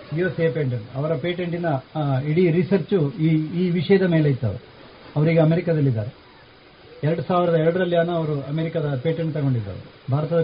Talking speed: 120 wpm